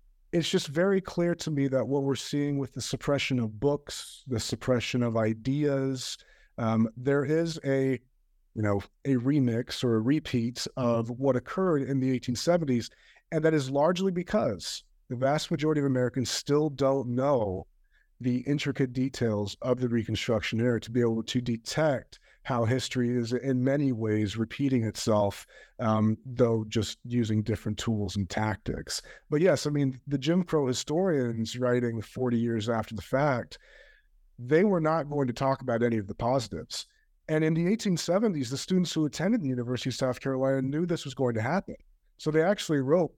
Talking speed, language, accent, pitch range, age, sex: 175 wpm, English, American, 115-145 Hz, 30-49, male